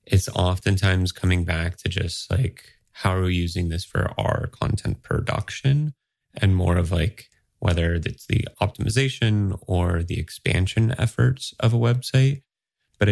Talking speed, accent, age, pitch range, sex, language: 145 wpm, American, 30-49, 90-110 Hz, male, English